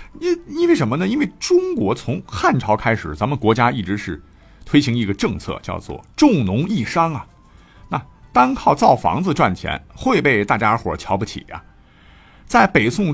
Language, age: Chinese, 50-69